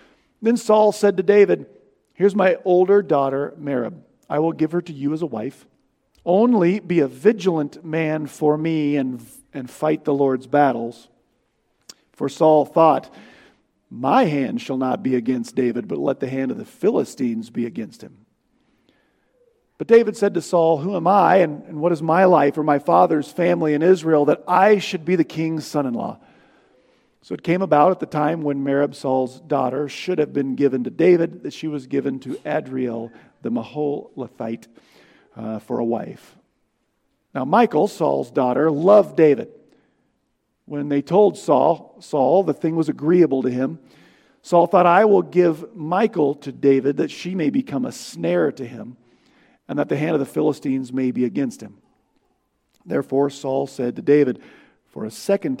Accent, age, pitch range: American, 40-59, 135-180 Hz